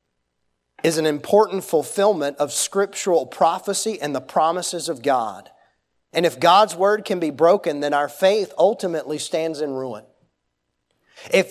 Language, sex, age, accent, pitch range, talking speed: English, male, 30-49, American, 130-185 Hz, 140 wpm